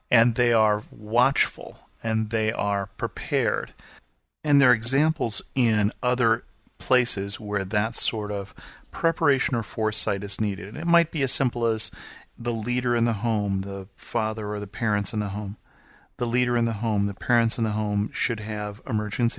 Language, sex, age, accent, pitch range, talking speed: English, male, 40-59, American, 105-120 Hz, 175 wpm